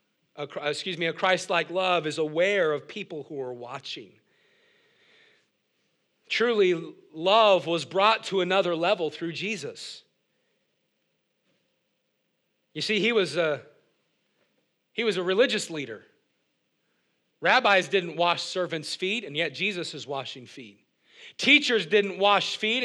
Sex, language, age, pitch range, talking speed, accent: male, English, 40-59, 160-210 Hz, 125 wpm, American